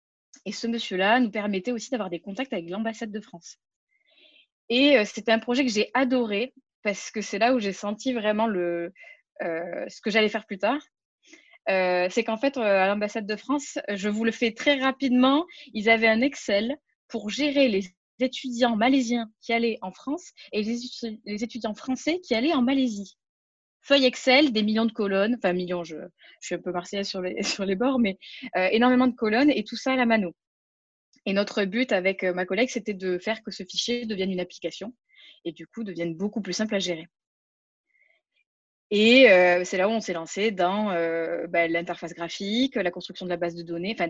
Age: 20-39